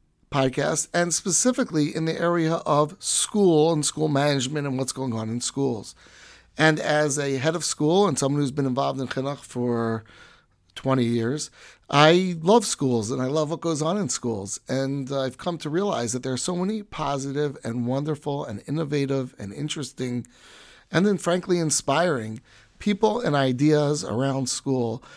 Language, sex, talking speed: English, male, 165 wpm